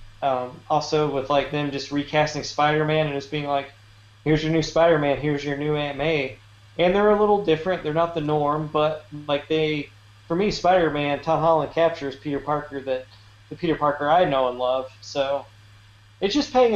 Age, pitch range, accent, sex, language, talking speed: 20-39, 130-160 Hz, American, male, English, 185 wpm